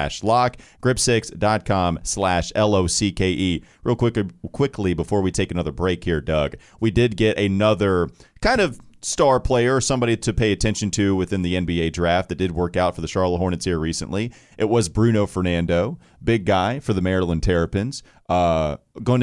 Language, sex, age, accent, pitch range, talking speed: English, male, 30-49, American, 90-115 Hz, 180 wpm